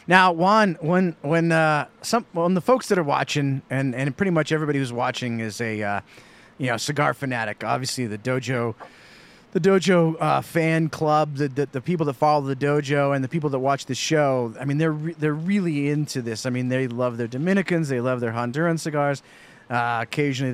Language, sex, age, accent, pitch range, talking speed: English, male, 30-49, American, 130-175 Hz, 205 wpm